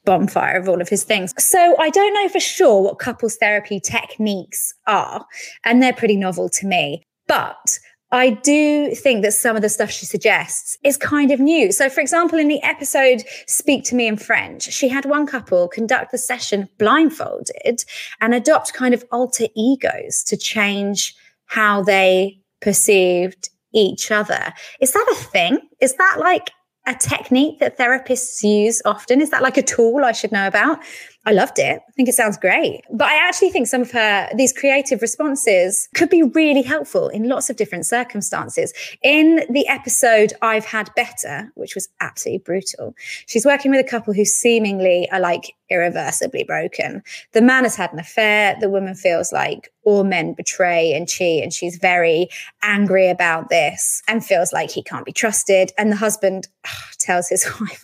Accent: British